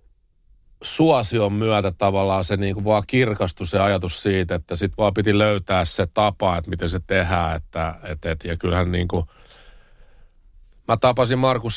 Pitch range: 85-105 Hz